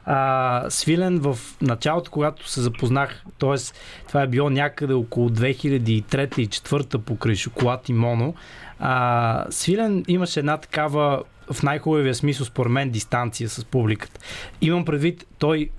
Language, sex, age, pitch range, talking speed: Bulgarian, male, 20-39, 130-160 Hz, 135 wpm